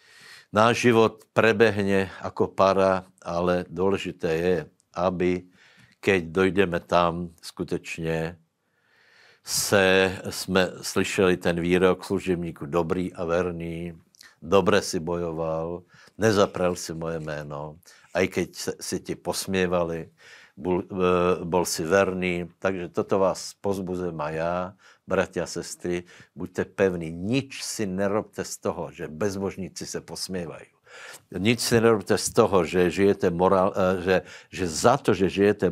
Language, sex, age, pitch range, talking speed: Slovak, male, 60-79, 85-100 Hz, 120 wpm